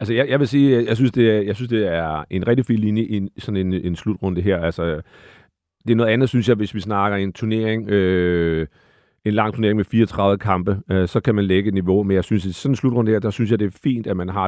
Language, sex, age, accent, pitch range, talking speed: Danish, male, 40-59, native, 105-125 Hz, 270 wpm